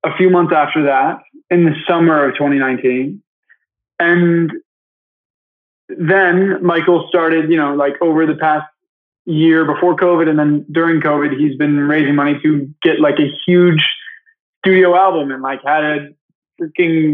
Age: 20-39